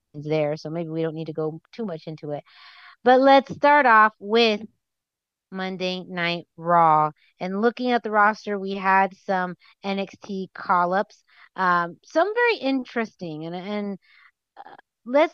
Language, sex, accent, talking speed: English, female, American, 150 wpm